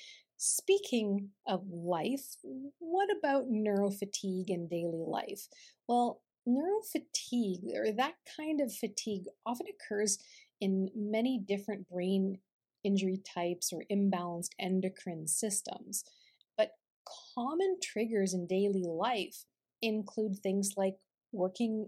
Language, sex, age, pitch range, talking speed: English, female, 40-59, 185-230 Hz, 105 wpm